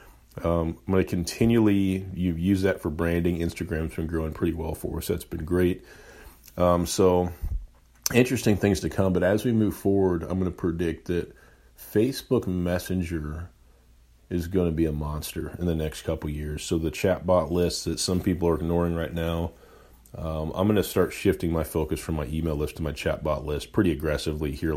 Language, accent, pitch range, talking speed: English, American, 80-90 Hz, 190 wpm